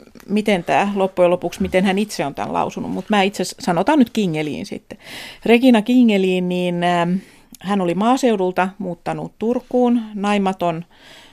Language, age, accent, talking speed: Finnish, 40-59, native, 140 wpm